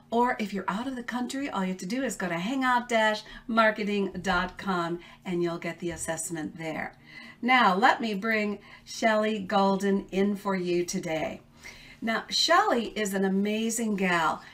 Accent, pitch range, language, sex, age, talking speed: American, 200-260 Hz, English, female, 50-69, 155 wpm